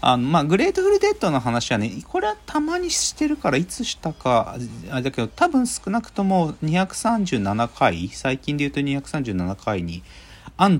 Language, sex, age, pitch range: Japanese, male, 40-59, 90-145 Hz